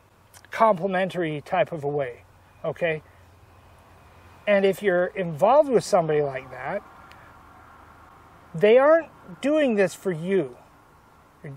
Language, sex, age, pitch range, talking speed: English, male, 30-49, 160-225 Hz, 110 wpm